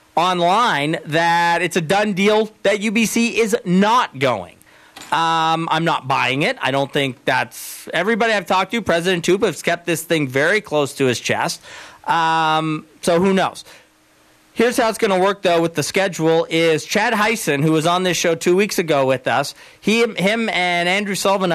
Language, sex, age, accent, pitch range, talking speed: English, male, 40-59, American, 160-200 Hz, 185 wpm